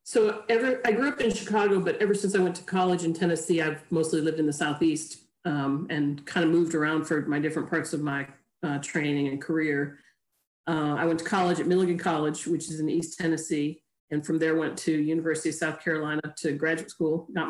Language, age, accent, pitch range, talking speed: English, 40-59, American, 150-170 Hz, 220 wpm